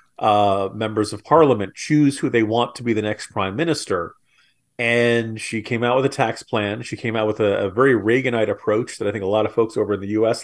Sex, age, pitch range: male, 40-59, 105-130 Hz